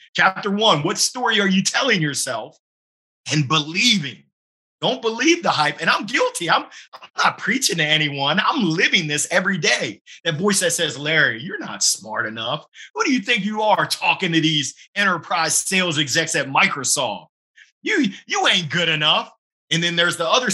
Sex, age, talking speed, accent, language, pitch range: male, 30-49, 180 wpm, American, English, 150-195 Hz